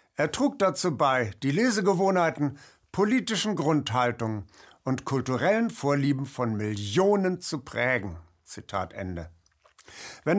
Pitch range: 120-170 Hz